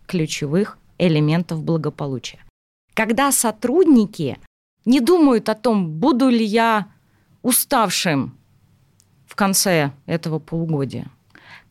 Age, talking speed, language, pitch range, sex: 20-39, 85 wpm, Russian, 155-225 Hz, female